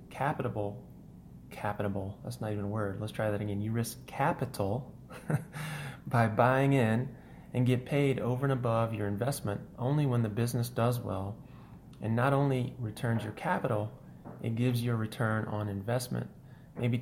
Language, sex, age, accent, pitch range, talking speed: English, male, 30-49, American, 105-130 Hz, 160 wpm